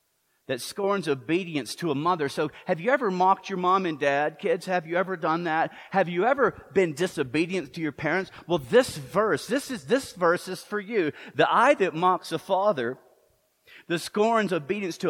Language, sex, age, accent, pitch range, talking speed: English, male, 40-59, American, 155-215 Hz, 195 wpm